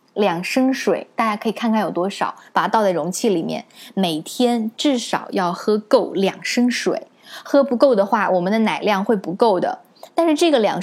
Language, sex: Chinese, female